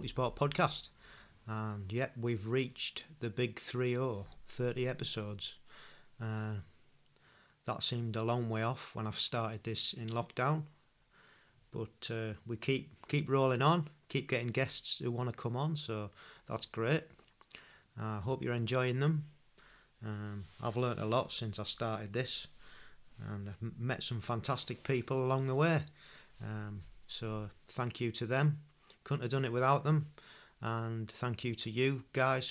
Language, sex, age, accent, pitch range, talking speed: English, male, 40-59, British, 110-130 Hz, 155 wpm